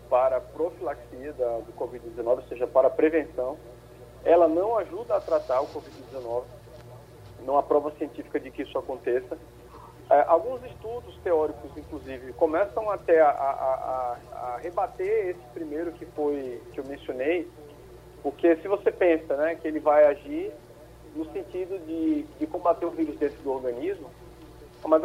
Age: 40-59